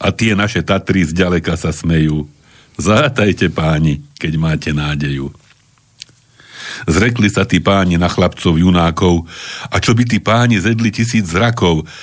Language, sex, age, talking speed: Slovak, male, 60-79, 135 wpm